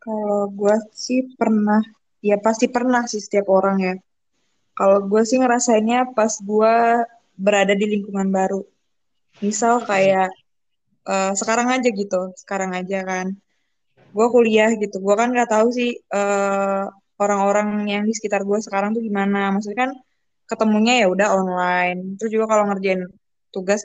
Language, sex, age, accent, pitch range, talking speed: Indonesian, female, 20-39, native, 195-225 Hz, 145 wpm